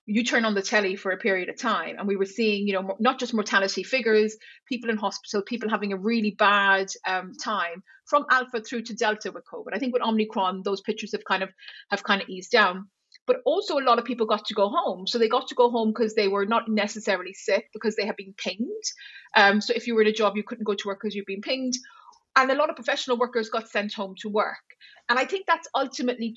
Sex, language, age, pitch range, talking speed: female, English, 30-49, 200-240 Hz, 255 wpm